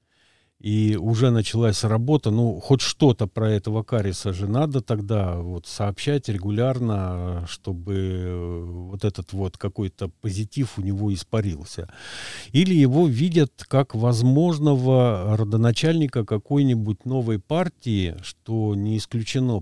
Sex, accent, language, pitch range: male, native, Russian, 95-120 Hz